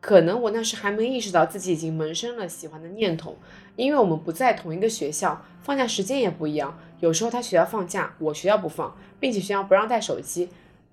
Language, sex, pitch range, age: Chinese, female, 170-235 Hz, 20-39